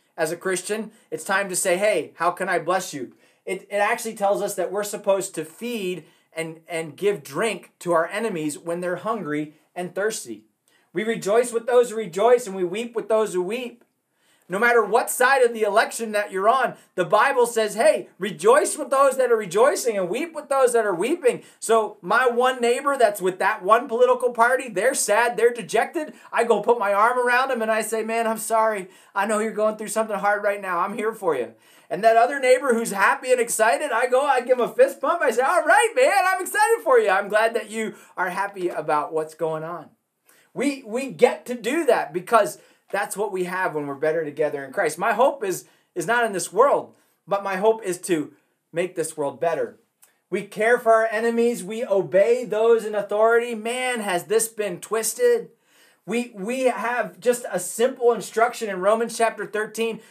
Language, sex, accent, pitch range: English, male, American, 190-240 Hz